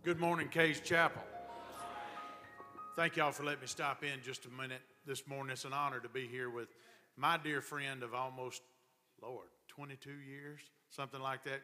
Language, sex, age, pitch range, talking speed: English, male, 40-59, 135-190 Hz, 175 wpm